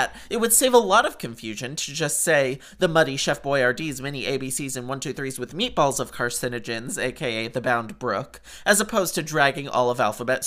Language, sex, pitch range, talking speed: English, male, 140-225 Hz, 190 wpm